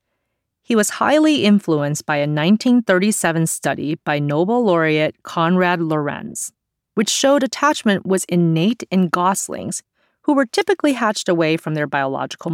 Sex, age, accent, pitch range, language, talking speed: female, 30-49, American, 155-220 Hz, English, 135 wpm